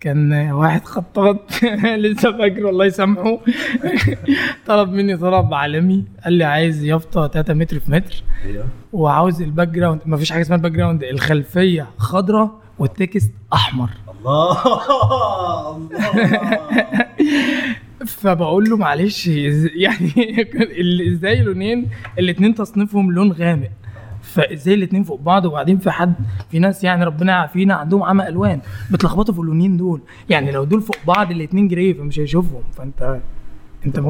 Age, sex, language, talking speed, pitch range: 20-39, male, Arabic, 130 wpm, 155-200 Hz